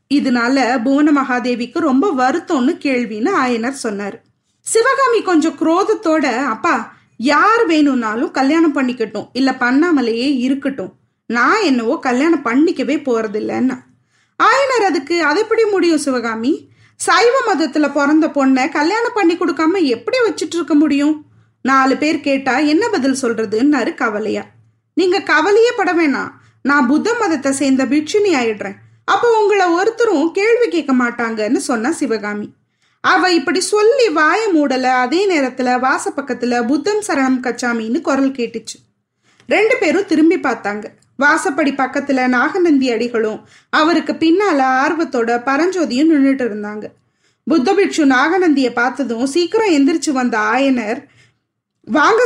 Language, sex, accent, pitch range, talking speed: Tamil, female, native, 255-350 Hz, 115 wpm